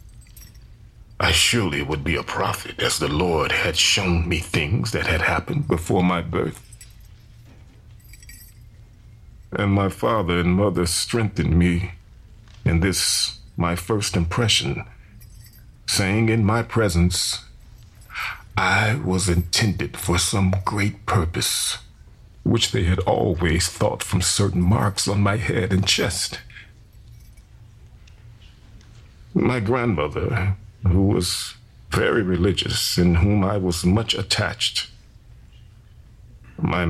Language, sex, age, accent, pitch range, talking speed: English, male, 40-59, American, 90-110 Hz, 110 wpm